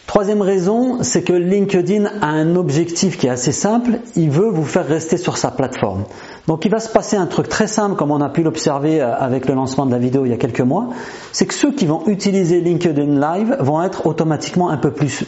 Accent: French